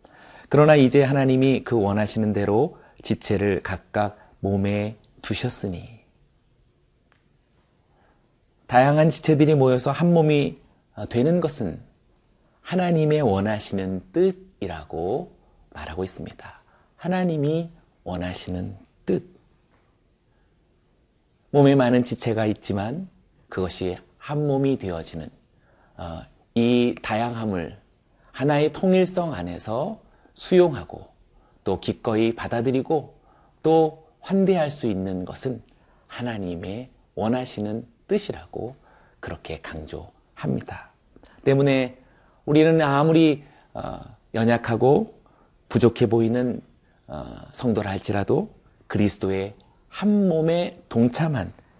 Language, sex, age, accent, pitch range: Korean, male, 30-49, native, 105-150 Hz